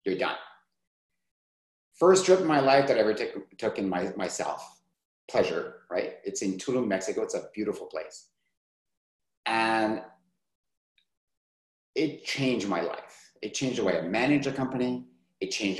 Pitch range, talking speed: 110-185 Hz, 150 wpm